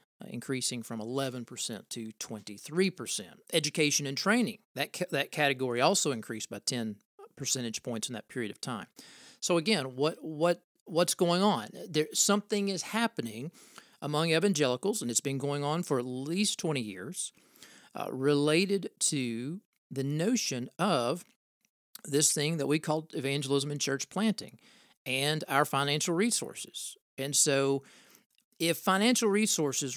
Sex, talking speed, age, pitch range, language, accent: male, 145 wpm, 40-59, 130-180 Hz, English, American